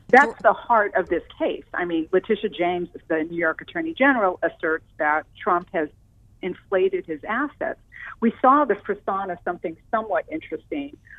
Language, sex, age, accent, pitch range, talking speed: English, female, 40-59, American, 160-205 Hz, 160 wpm